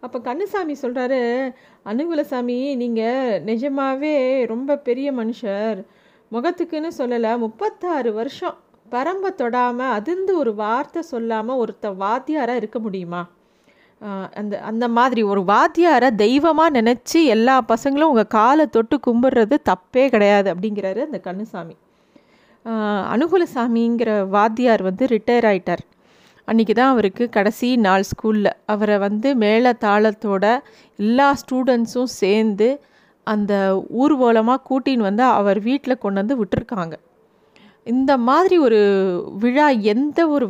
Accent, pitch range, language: native, 210-275 Hz, Tamil